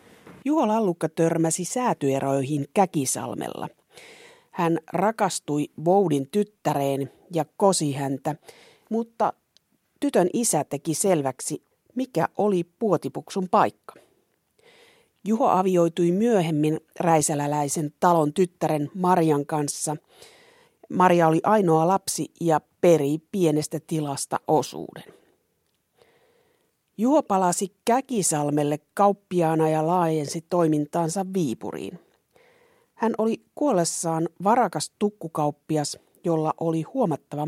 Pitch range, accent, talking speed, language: 155-205 Hz, native, 85 wpm, Finnish